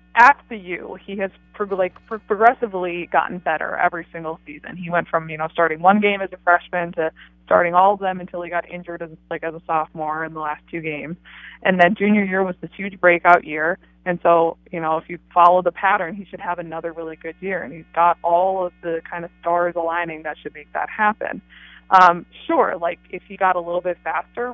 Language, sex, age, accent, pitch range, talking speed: English, female, 20-39, American, 165-185 Hz, 225 wpm